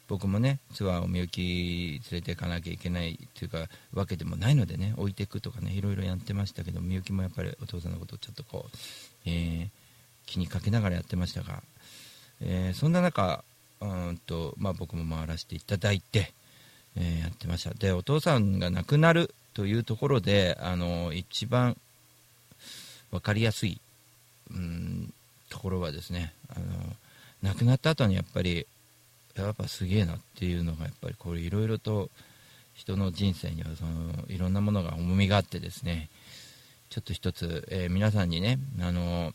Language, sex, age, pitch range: Japanese, male, 50-69, 90-120 Hz